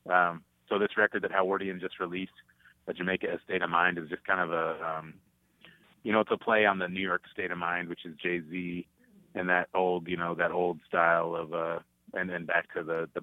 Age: 30-49